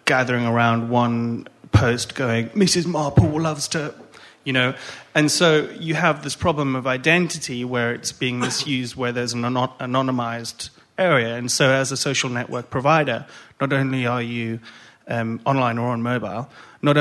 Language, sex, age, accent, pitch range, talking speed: English, male, 30-49, British, 115-130 Hz, 160 wpm